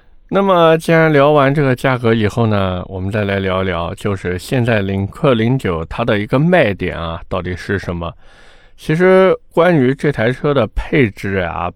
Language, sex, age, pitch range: Chinese, male, 20-39, 95-130 Hz